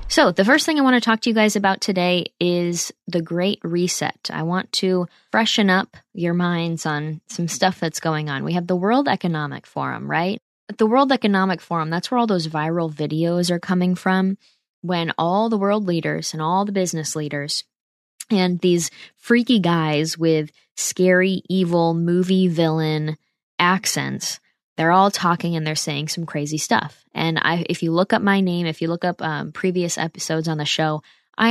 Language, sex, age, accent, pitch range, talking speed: English, female, 10-29, American, 160-195 Hz, 185 wpm